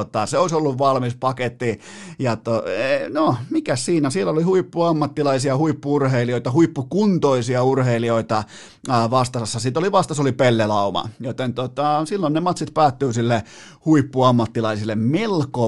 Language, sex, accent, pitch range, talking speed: Finnish, male, native, 120-155 Hz, 120 wpm